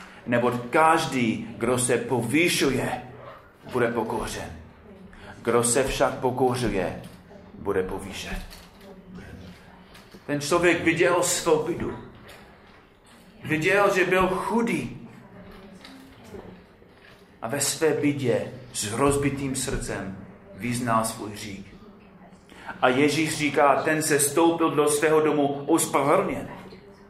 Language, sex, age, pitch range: Czech, male, 30-49, 130-195 Hz